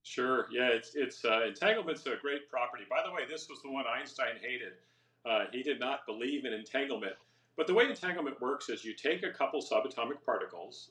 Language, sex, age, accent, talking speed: English, male, 50-69, American, 205 wpm